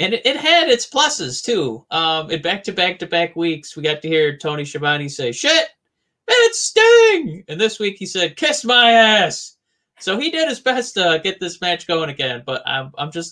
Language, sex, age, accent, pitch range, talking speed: English, male, 30-49, American, 135-185 Hz, 205 wpm